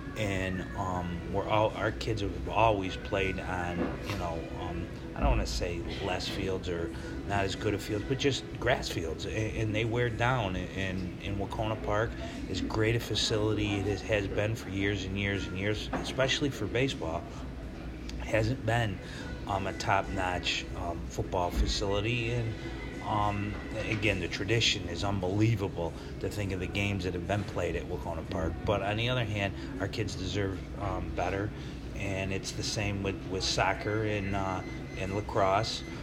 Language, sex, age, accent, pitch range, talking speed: English, male, 30-49, American, 90-110 Hz, 175 wpm